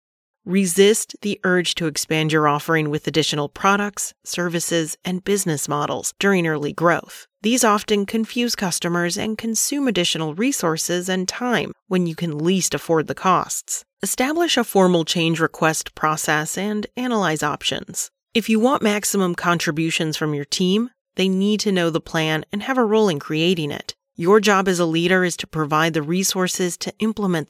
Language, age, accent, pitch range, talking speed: English, 30-49, American, 160-210 Hz, 165 wpm